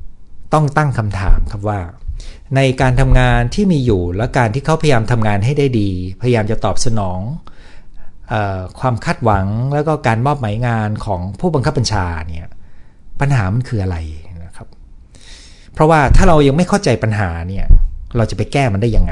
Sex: male